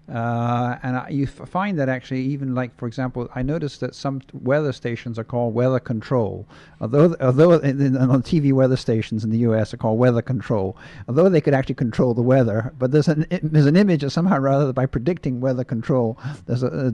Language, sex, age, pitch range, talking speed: English, male, 50-69, 115-145 Hz, 215 wpm